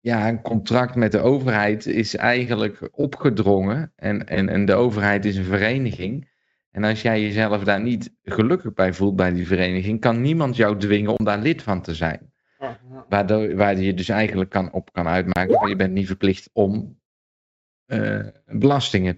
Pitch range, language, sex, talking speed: 95-115 Hz, Dutch, male, 170 wpm